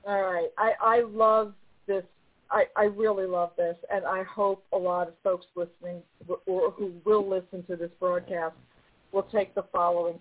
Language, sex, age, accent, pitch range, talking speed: English, female, 50-69, American, 180-230 Hz, 175 wpm